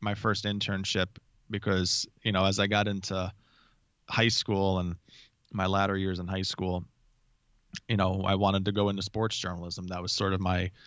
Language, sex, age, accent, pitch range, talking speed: English, male, 20-39, American, 95-105 Hz, 180 wpm